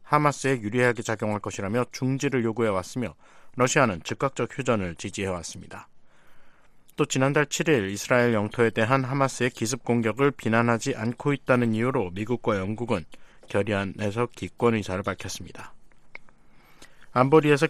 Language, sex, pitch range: Korean, male, 110-140 Hz